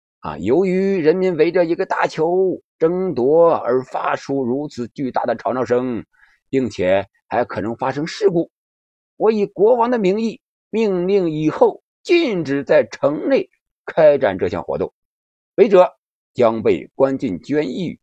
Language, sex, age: Chinese, male, 50-69